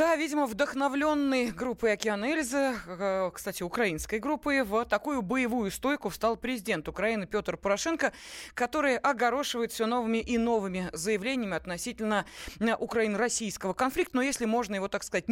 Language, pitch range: Russian, 190-255 Hz